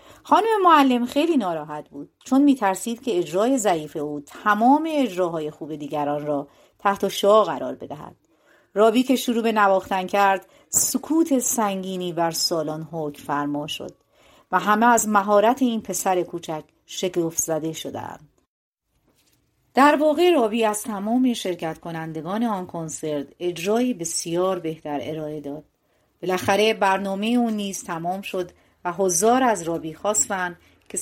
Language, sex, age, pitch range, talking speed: Persian, female, 40-59, 165-225 Hz, 130 wpm